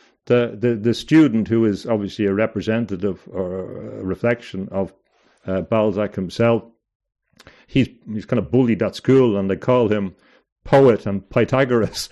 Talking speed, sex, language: 150 wpm, male, English